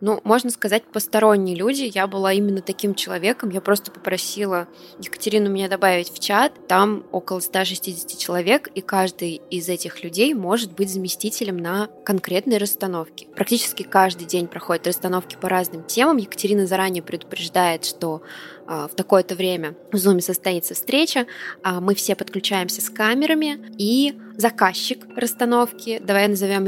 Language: Russian